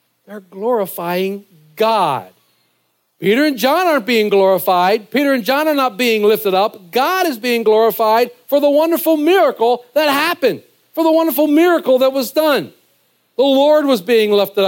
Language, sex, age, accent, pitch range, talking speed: English, male, 50-69, American, 190-255 Hz, 160 wpm